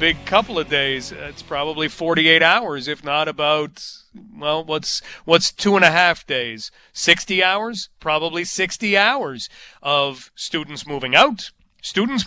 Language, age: English, 40-59